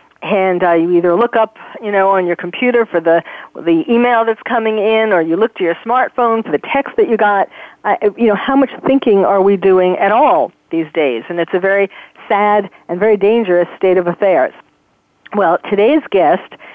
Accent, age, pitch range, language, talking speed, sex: American, 50-69, 180-225 Hz, English, 205 wpm, female